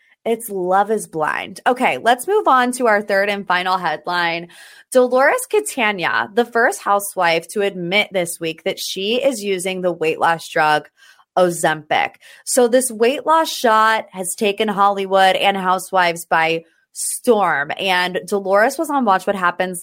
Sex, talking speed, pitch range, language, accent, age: female, 155 wpm, 185-245 Hz, English, American, 20-39